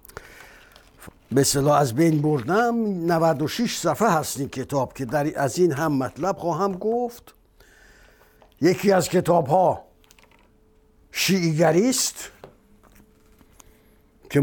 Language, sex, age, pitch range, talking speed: Persian, male, 60-79, 135-170 Hz, 85 wpm